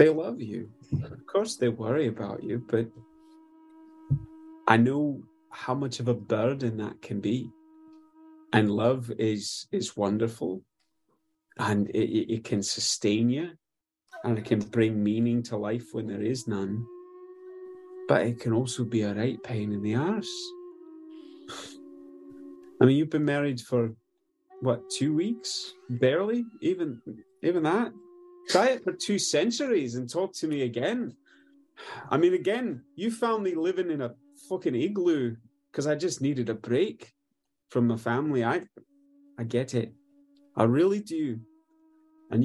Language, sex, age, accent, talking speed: English, male, 30-49, British, 145 wpm